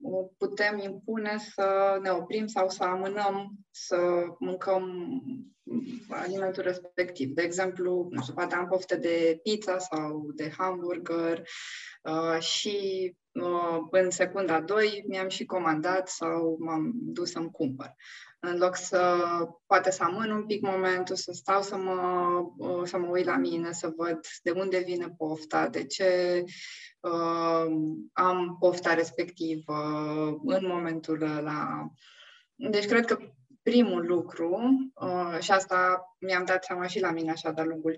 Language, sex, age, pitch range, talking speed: Romanian, female, 20-39, 170-205 Hz, 130 wpm